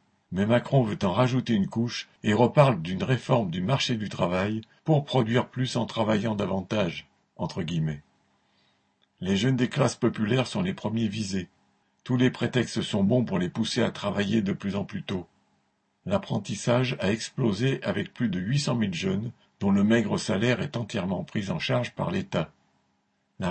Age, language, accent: 60-79, French, French